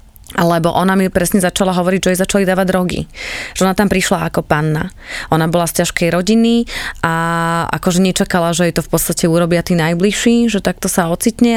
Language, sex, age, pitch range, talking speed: Slovak, female, 20-39, 165-195 Hz, 190 wpm